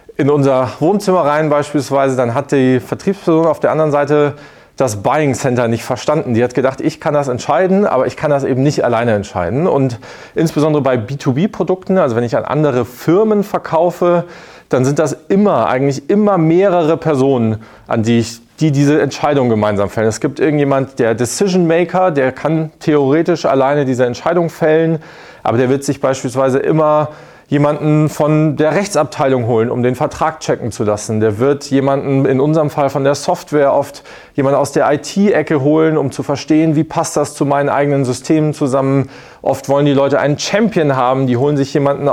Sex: male